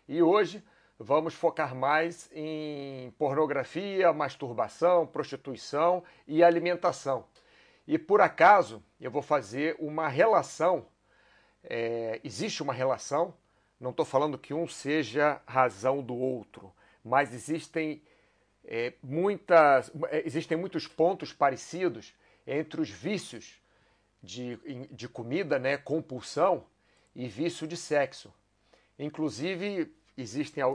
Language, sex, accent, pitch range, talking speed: Portuguese, male, Brazilian, 125-160 Hz, 105 wpm